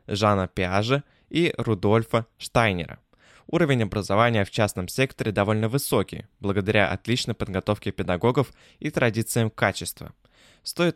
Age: 20-39